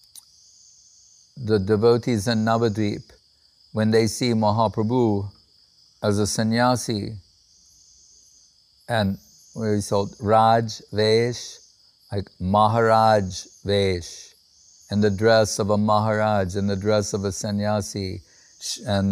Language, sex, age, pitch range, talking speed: English, male, 50-69, 100-120 Hz, 95 wpm